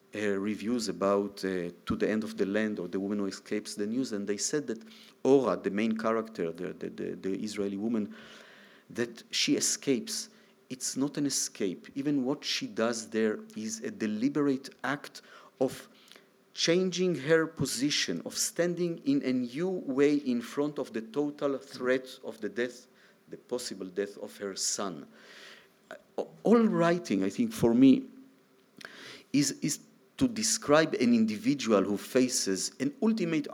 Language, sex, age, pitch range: Dutch, male, 50-69, 105-170 Hz